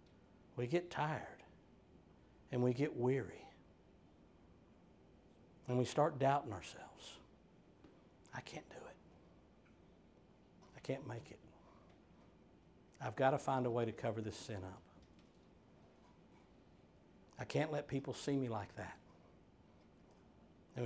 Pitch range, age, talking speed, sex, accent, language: 120-150 Hz, 60-79, 115 wpm, male, American, English